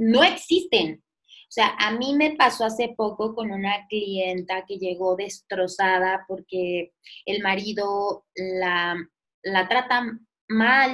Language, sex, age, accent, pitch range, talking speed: Spanish, female, 20-39, Mexican, 220-300 Hz, 125 wpm